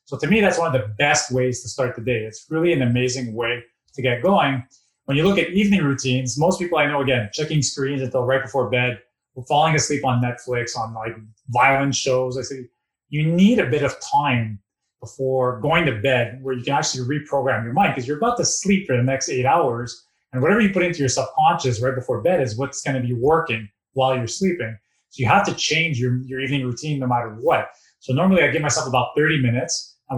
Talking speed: 230 wpm